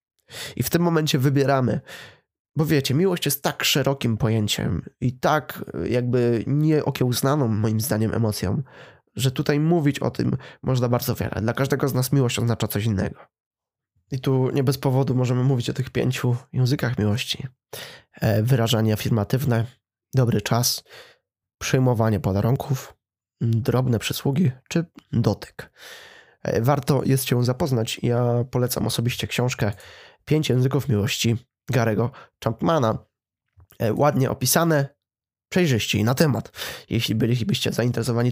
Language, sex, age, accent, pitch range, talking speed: Polish, male, 20-39, native, 115-140 Hz, 125 wpm